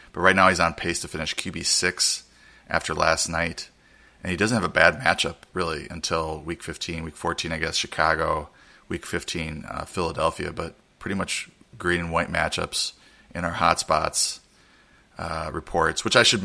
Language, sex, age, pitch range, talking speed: English, male, 30-49, 80-90 Hz, 170 wpm